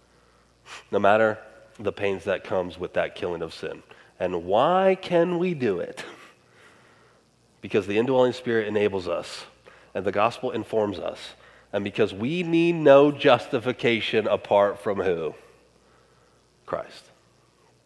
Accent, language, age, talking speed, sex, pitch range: American, English, 30-49, 130 wpm, male, 130-200 Hz